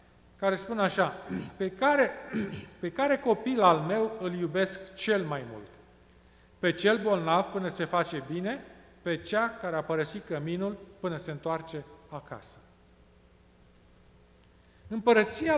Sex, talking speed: male, 125 wpm